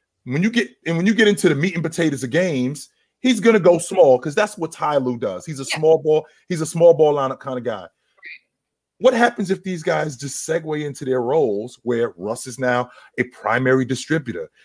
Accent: American